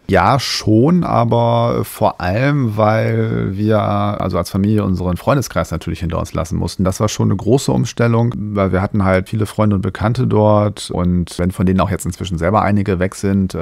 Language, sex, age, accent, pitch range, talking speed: German, male, 40-59, German, 90-105 Hz, 190 wpm